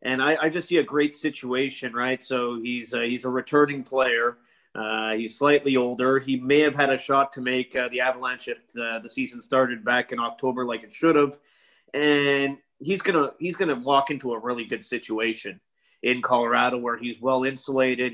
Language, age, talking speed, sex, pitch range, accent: English, 30-49, 200 wpm, male, 125-145 Hz, American